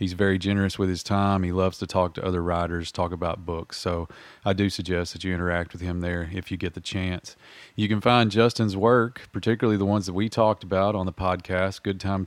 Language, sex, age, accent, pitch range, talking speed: English, male, 30-49, American, 95-110 Hz, 235 wpm